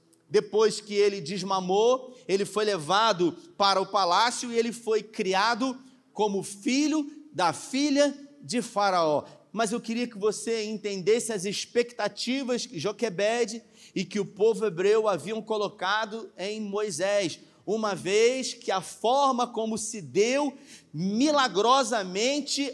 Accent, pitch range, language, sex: Brazilian, 205-265 Hz, Portuguese, male